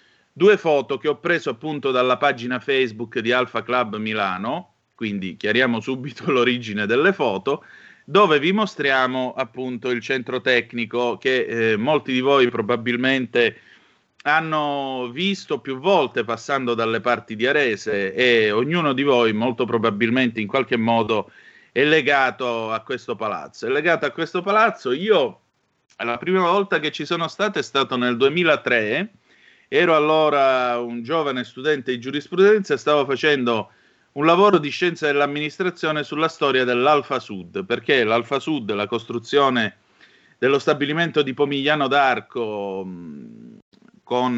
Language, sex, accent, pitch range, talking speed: Italian, male, native, 120-155 Hz, 140 wpm